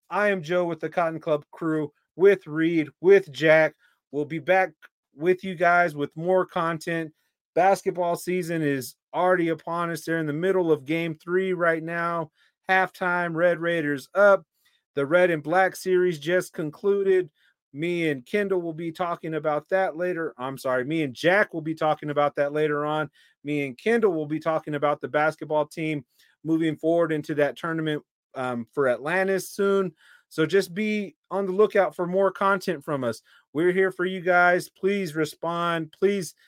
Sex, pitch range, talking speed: male, 150-180 Hz, 175 wpm